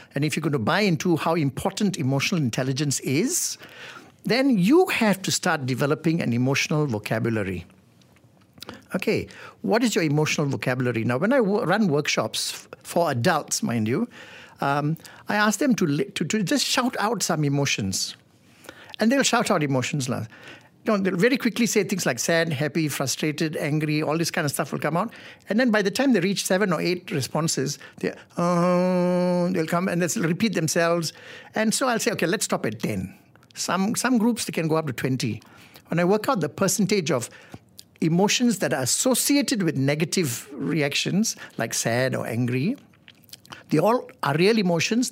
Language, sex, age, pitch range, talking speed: English, male, 60-79, 145-210 Hz, 180 wpm